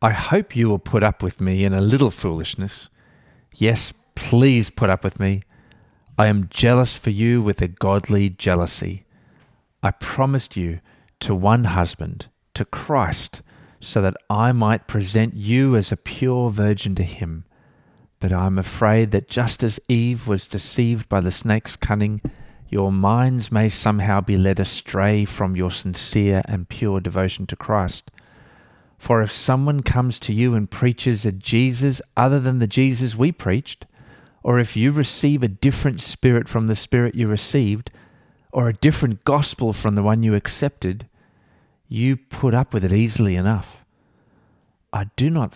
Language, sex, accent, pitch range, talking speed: English, male, Australian, 95-120 Hz, 160 wpm